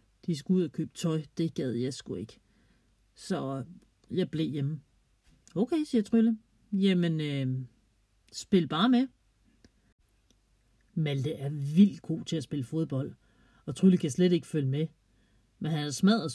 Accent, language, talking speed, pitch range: native, Danish, 150 wpm, 135-180 Hz